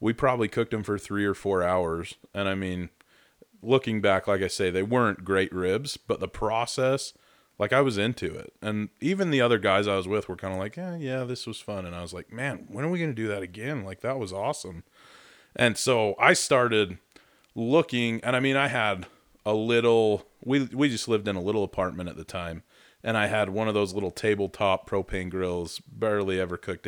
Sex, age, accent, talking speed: male, 30-49, American, 220 wpm